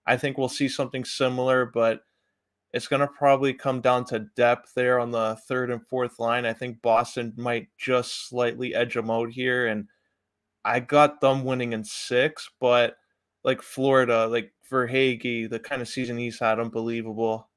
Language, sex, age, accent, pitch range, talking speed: English, male, 20-39, American, 120-135 Hz, 175 wpm